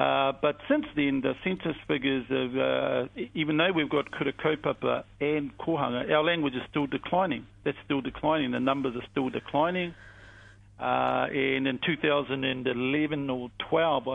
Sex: male